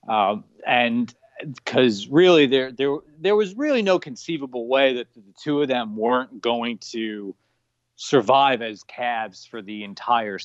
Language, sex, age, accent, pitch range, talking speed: English, male, 30-49, American, 125-190 Hz, 150 wpm